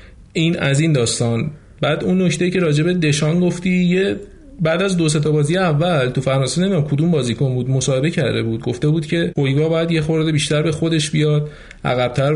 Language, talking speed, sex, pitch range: Persian, 190 wpm, male, 130-165 Hz